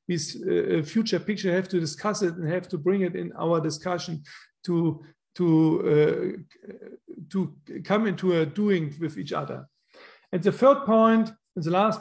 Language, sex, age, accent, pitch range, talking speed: Polish, male, 50-69, German, 170-205 Hz, 170 wpm